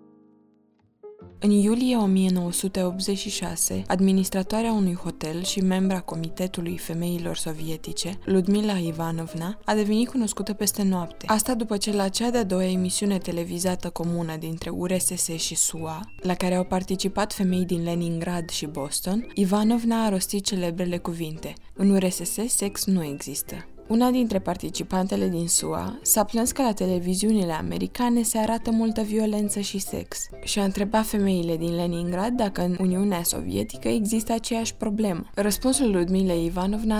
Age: 20-39